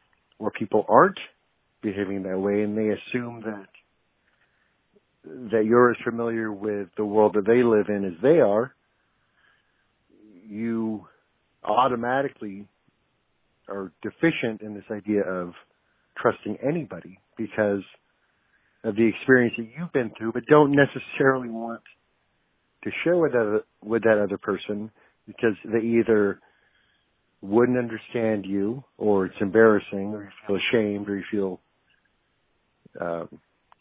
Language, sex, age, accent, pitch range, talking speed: English, male, 50-69, American, 100-115 Hz, 130 wpm